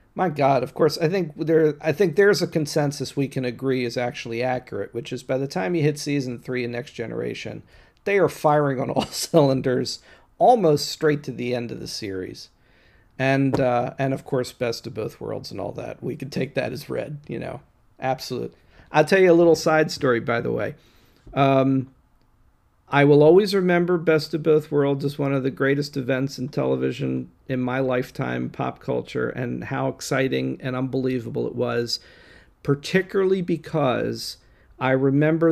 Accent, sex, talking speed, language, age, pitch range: American, male, 180 wpm, English, 40-59, 125-150 Hz